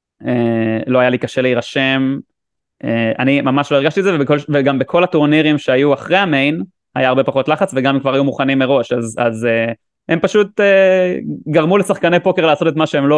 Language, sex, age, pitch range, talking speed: Hebrew, male, 20-39, 120-145 Hz, 200 wpm